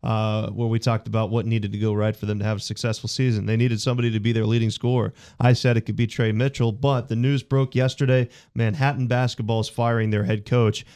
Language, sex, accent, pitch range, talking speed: English, male, American, 110-125 Hz, 240 wpm